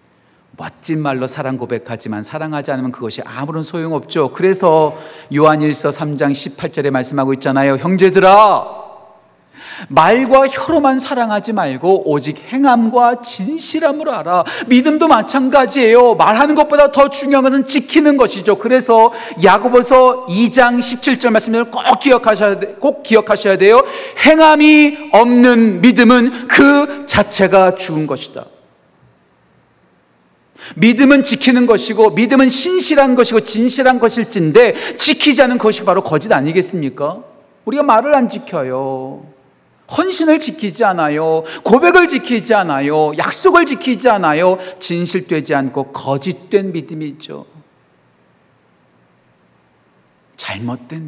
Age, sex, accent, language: 40-59, male, native, Korean